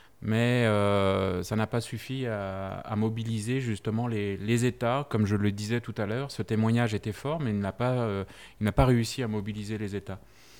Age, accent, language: 30-49, French, French